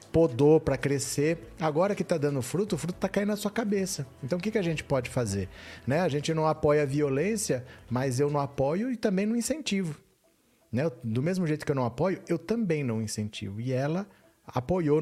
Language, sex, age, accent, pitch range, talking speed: Portuguese, male, 40-59, Brazilian, 125-170 Hz, 210 wpm